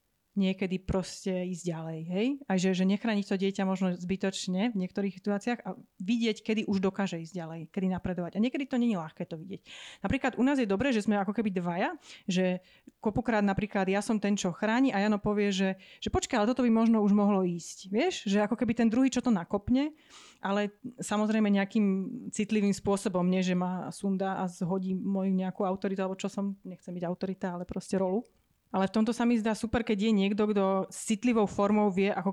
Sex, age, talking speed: female, 30-49, 200 wpm